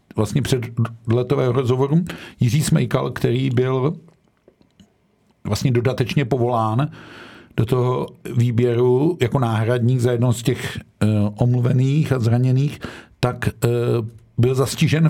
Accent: native